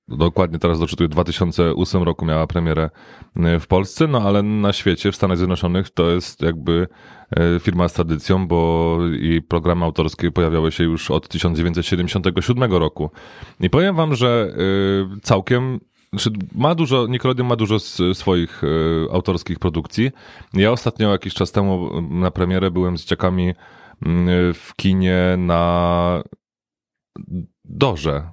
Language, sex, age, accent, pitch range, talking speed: Polish, male, 30-49, native, 85-100 Hz, 125 wpm